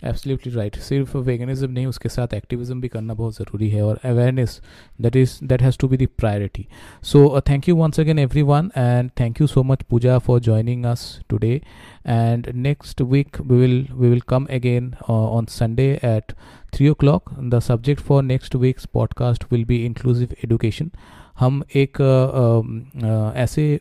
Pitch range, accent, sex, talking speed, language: 115-130 Hz, native, male, 175 wpm, Hindi